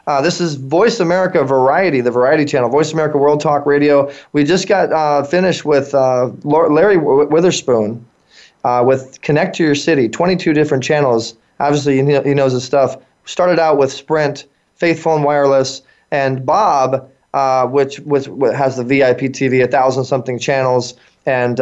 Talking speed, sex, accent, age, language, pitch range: 170 wpm, male, American, 20-39, English, 135-160 Hz